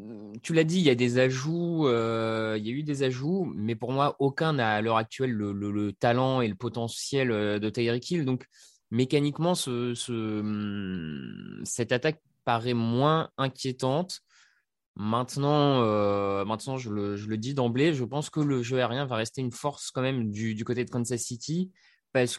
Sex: male